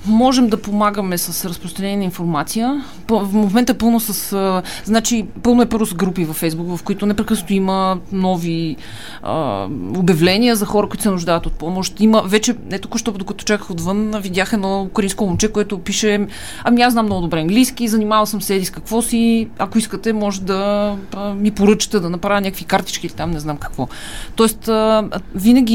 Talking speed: 185 wpm